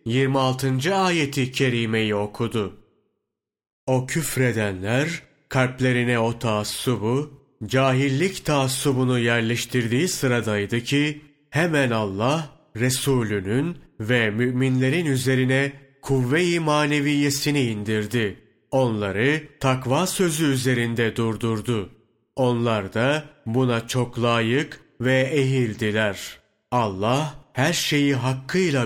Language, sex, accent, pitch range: Turkish, male, native, 115-145 Hz